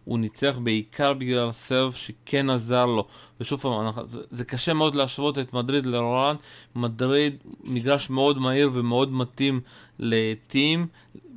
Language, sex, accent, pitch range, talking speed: Hebrew, male, Serbian, 125-145 Hz, 125 wpm